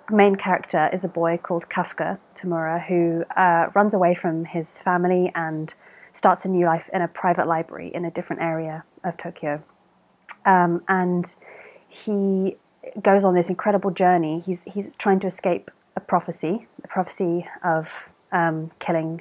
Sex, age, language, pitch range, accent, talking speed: female, 30-49, English, 165-185 Hz, British, 155 wpm